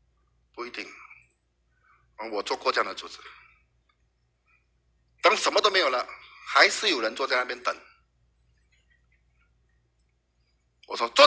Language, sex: Chinese, male